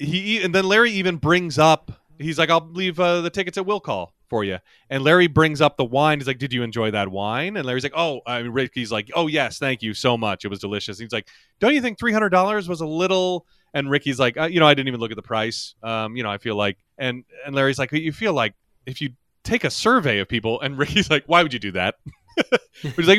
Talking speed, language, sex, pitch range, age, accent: 260 wpm, English, male, 115-170 Hz, 30-49, American